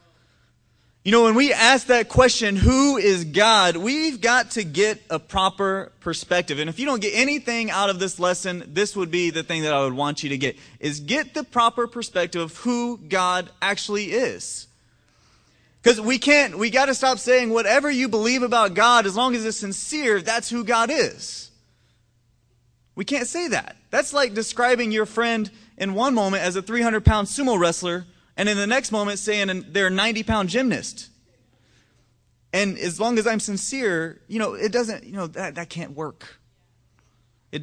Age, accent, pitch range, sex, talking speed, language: 30-49, American, 155-235 Hz, male, 185 wpm, English